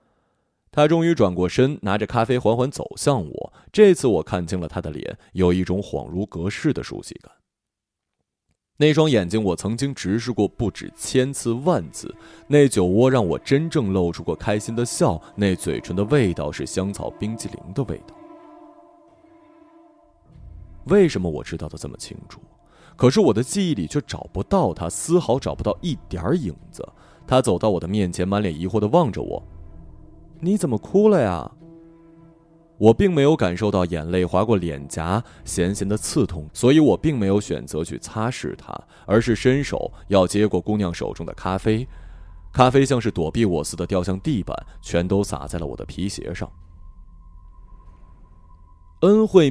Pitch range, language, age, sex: 85-130 Hz, Chinese, 20-39, male